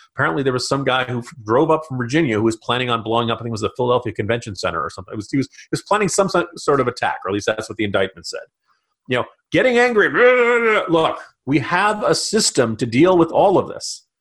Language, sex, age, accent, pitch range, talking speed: English, male, 40-59, American, 115-195 Hz, 240 wpm